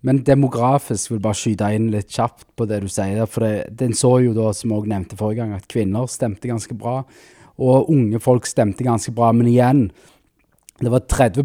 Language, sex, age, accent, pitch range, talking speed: English, male, 20-39, Norwegian, 110-130 Hz, 205 wpm